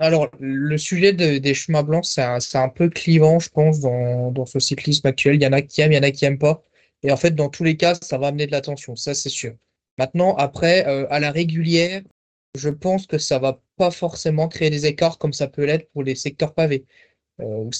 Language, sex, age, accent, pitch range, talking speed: French, male, 20-39, French, 140-170 Hz, 250 wpm